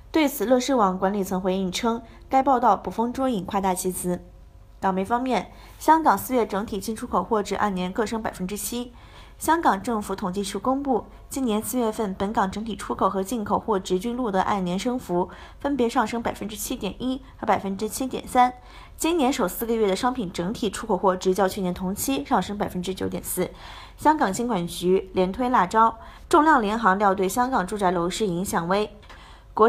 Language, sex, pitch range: Chinese, female, 190-245 Hz